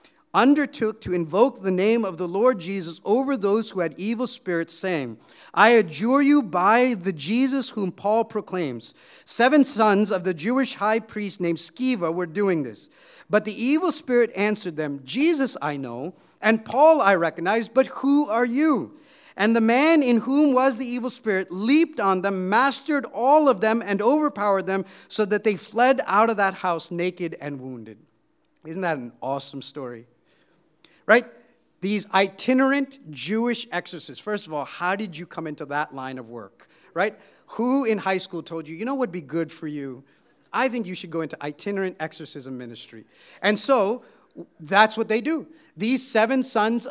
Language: English